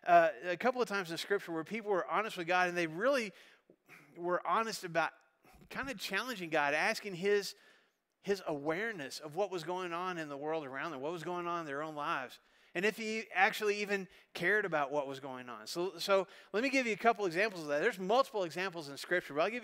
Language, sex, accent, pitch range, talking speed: English, male, American, 165-205 Hz, 230 wpm